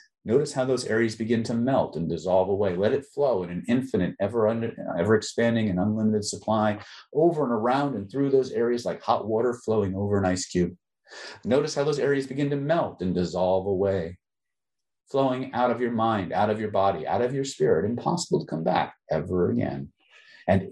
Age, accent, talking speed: 50-69, American, 190 wpm